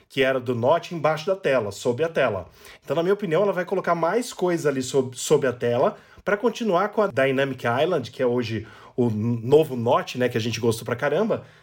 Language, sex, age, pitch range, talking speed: Portuguese, male, 20-39, 130-185 Hz, 220 wpm